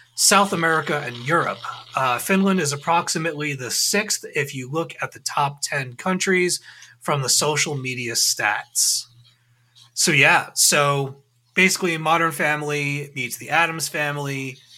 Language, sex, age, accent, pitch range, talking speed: English, male, 30-49, American, 120-155 Hz, 135 wpm